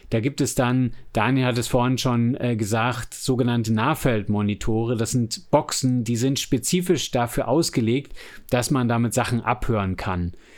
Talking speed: 155 wpm